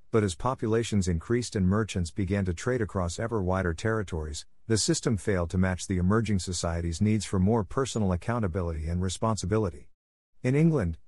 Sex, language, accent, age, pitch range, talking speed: male, English, American, 50-69, 85-110 Hz, 160 wpm